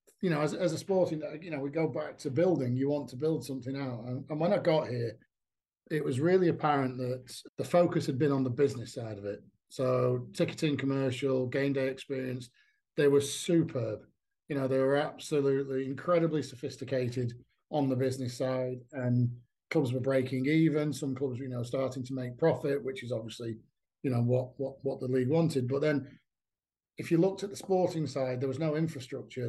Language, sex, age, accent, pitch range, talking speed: English, male, 40-59, British, 130-155 Hz, 195 wpm